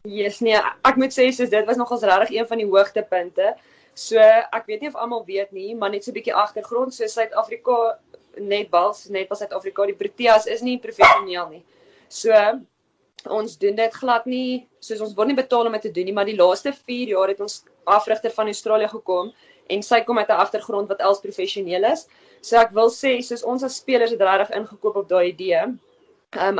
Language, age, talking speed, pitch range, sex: English, 20-39, 205 wpm, 195-235 Hz, female